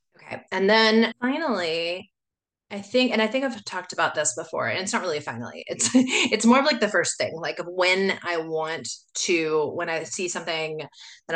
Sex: female